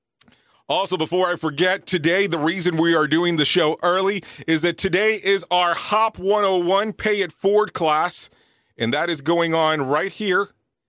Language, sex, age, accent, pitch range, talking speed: English, male, 40-59, American, 155-195 Hz, 170 wpm